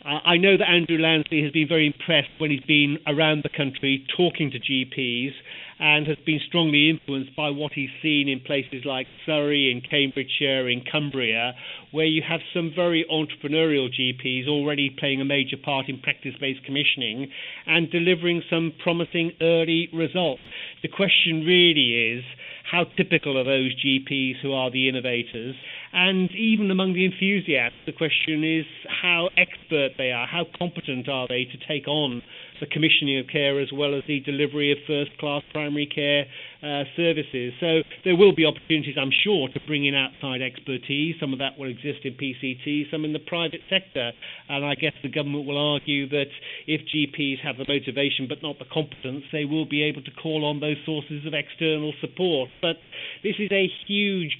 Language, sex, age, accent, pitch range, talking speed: English, male, 40-59, British, 135-160 Hz, 180 wpm